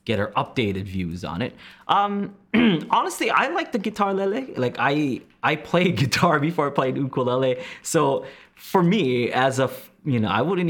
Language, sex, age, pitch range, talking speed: English, male, 20-39, 105-145 Hz, 180 wpm